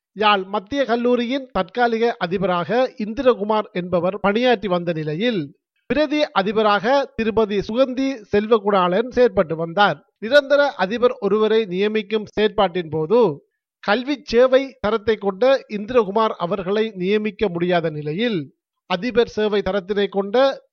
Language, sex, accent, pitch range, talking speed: Tamil, male, native, 190-240 Hz, 105 wpm